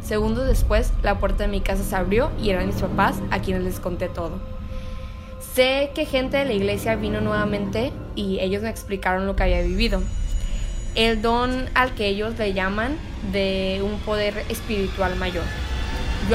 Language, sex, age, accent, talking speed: Spanish, female, 20-39, Mexican, 175 wpm